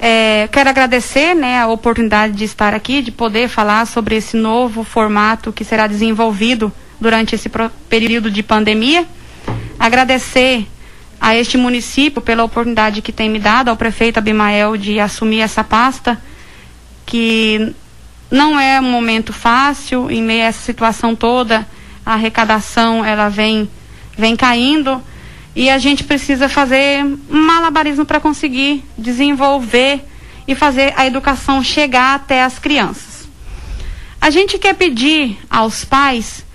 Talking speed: 135 wpm